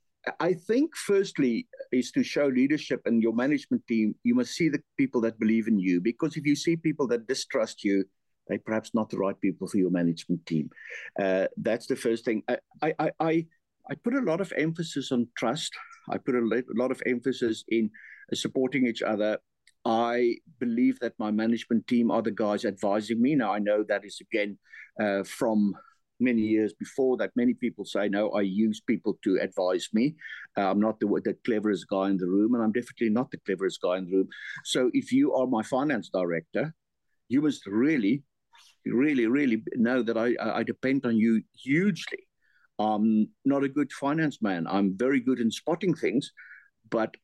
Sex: male